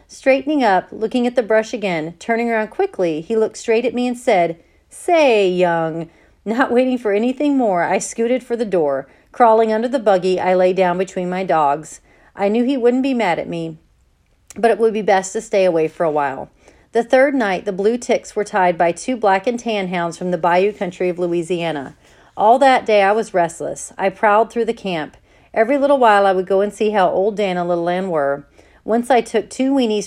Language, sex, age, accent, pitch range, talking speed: English, female, 40-59, American, 180-230 Hz, 220 wpm